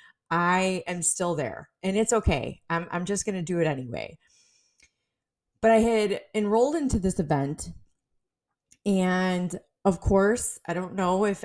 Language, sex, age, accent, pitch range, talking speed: English, female, 20-39, American, 165-210 Hz, 150 wpm